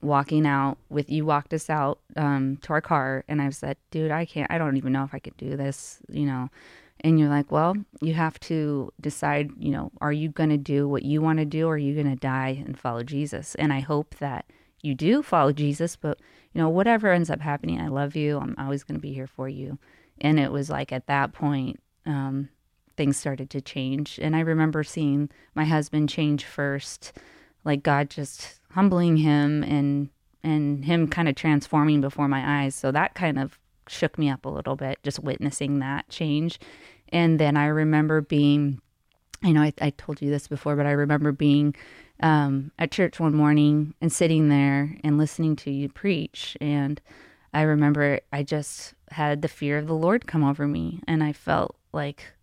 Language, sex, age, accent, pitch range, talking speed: English, female, 20-39, American, 140-155 Hz, 205 wpm